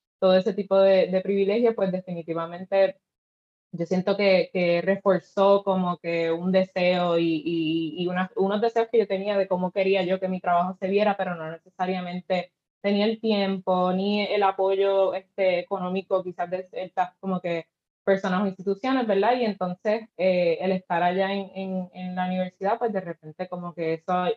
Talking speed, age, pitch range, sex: 175 wpm, 20-39, 175-195 Hz, female